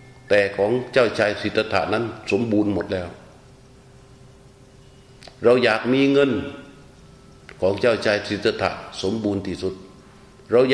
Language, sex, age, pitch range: Thai, male, 60-79, 105-130 Hz